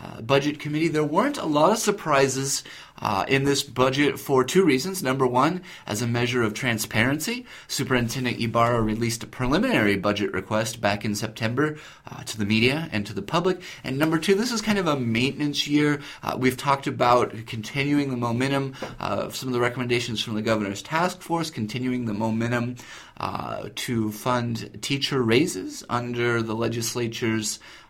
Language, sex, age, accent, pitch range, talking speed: English, male, 30-49, American, 120-155 Hz, 170 wpm